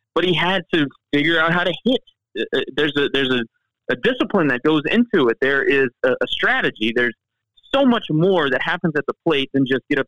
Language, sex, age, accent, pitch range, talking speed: English, male, 30-49, American, 125-195 Hz, 220 wpm